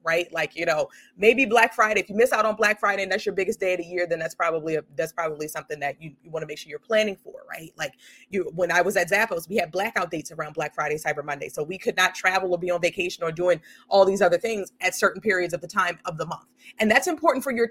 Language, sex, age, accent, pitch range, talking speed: English, female, 30-49, American, 175-220 Hz, 290 wpm